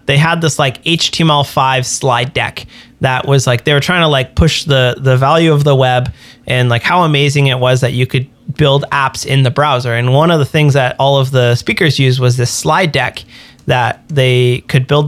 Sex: male